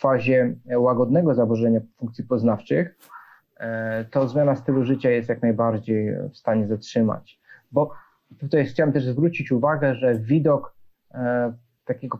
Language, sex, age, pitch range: Polish, male, 30-49, 115-135 Hz